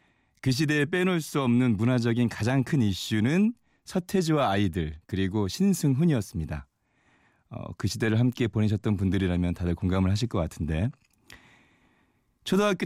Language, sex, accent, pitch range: Korean, male, native, 100-145 Hz